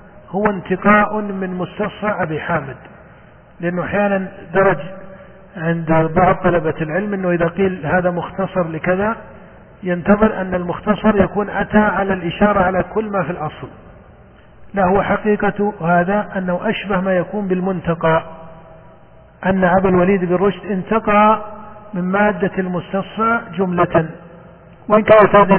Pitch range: 175-195 Hz